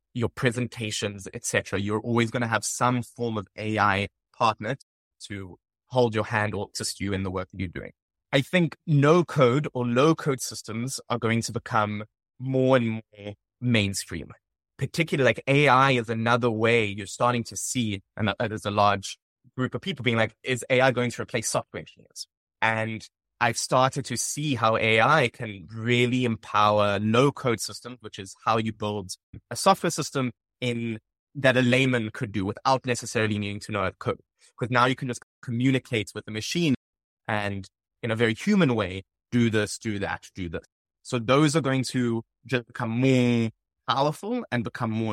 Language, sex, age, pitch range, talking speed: English, male, 20-39, 105-130 Hz, 180 wpm